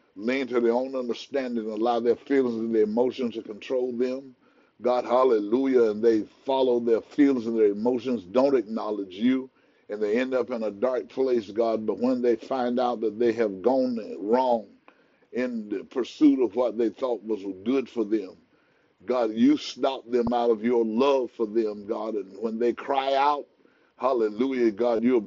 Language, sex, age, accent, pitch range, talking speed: English, male, 50-69, American, 115-135 Hz, 185 wpm